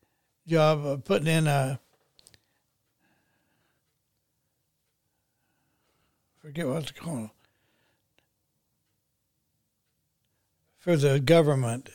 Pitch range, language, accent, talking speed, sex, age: 130-160 Hz, English, American, 55 wpm, male, 60-79